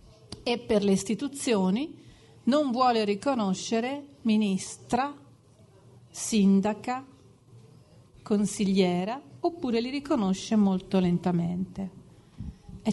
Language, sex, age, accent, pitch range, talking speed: Polish, female, 40-59, Italian, 185-235 Hz, 75 wpm